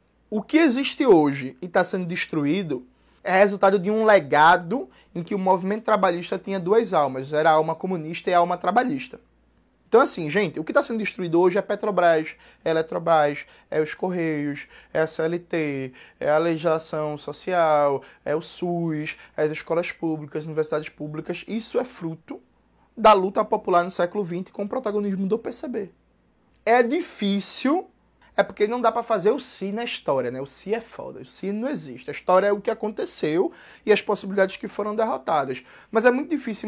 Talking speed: 185 wpm